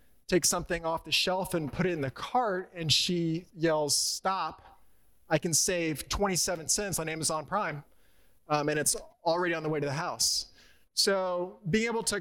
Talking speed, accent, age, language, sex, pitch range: 180 wpm, American, 20-39, English, male, 155-195 Hz